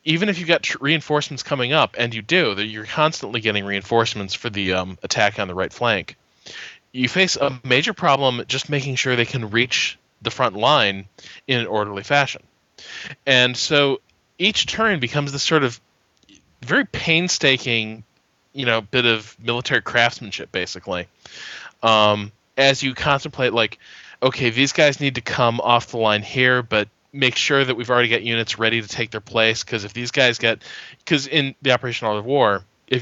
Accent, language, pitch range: American, English, 110-140 Hz